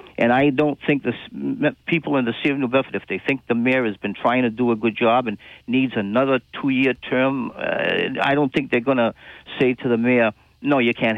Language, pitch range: English, 105-130 Hz